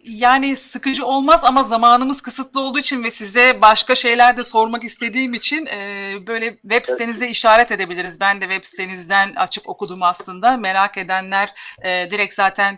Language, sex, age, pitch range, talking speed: Turkish, female, 40-59, 200-250 Hz, 150 wpm